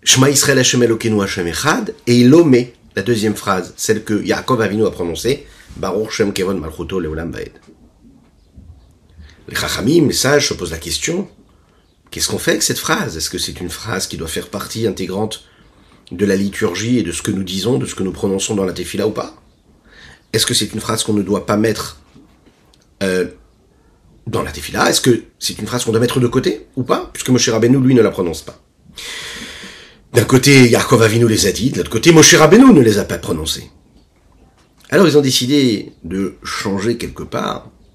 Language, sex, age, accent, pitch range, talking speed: French, male, 40-59, French, 95-125 Hz, 175 wpm